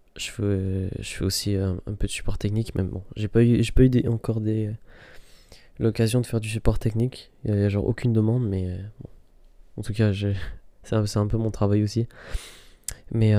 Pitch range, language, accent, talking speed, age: 95-110 Hz, French, French, 220 wpm, 20-39